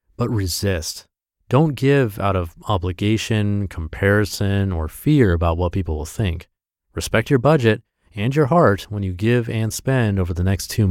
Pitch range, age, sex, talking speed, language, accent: 90-125 Hz, 30-49, male, 165 wpm, English, American